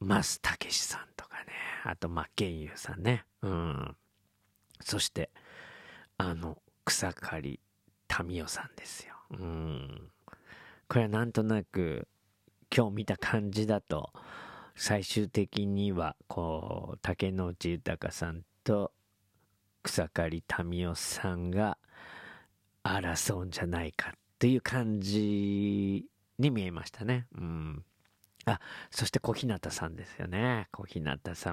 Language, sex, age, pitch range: Japanese, male, 40-59, 85-110 Hz